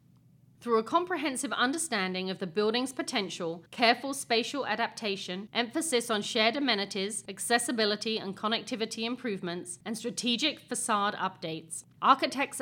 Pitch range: 190-255 Hz